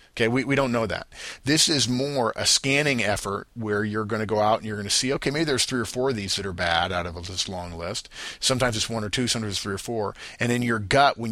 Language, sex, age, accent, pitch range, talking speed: English, male, 50-69, American, 95-125 Hz, 285 wpm